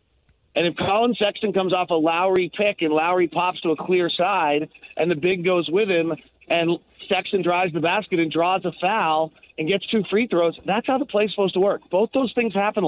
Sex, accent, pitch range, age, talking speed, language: male, American, 165-200 Hz, 40-59, 220 wpm, English